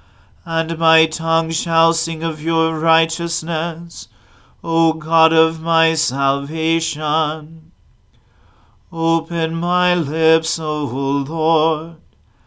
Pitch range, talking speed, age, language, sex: 150-165 Hz, 85 wpm, 40-59, English, male